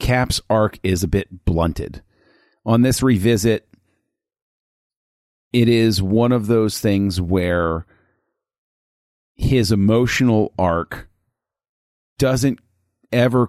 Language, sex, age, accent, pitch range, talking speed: English, male, 40-59, American, 95-120 Hz, 95 wpm